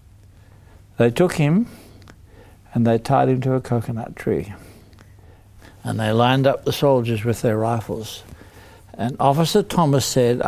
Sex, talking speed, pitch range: male, 135 wpm, 100-130 Hz